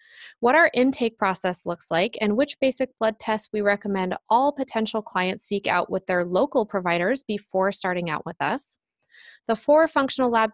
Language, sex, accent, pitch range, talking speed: English, female, American, 195-250 Hz, 175 wpm